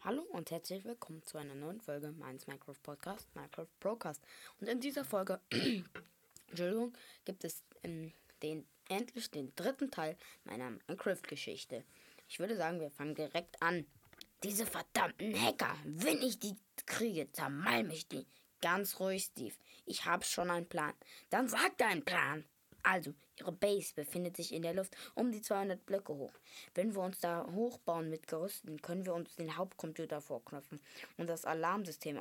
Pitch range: 160-200 Hz